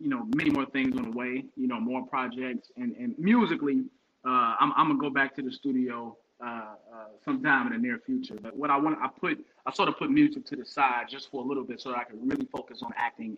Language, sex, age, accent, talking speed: English, male, 30-49, American, 260 wpm